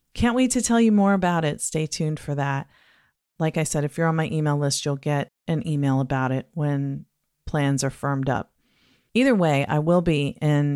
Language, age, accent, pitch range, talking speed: English, 40-59, American, 145-165 Hz, 210 wpm